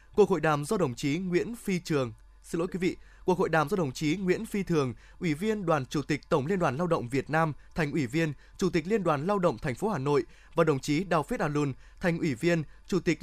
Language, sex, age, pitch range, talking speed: Vietnamese, male, 20-39, 145-185 Hz, 270 wpm